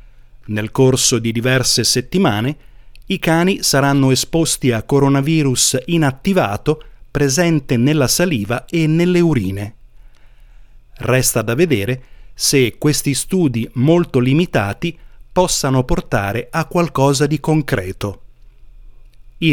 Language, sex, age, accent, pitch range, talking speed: Italian, male, 30-49, native, 120-160 Hz, 100 wpm